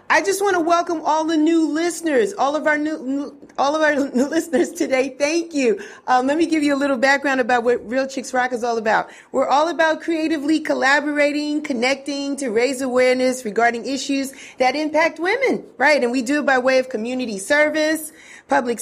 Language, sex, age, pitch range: English, female, 40-59, 220-285 Hz